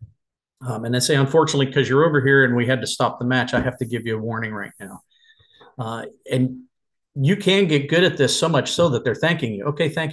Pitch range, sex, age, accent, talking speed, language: 125-160 Hz, male, 40-59, American, 250 wpm, English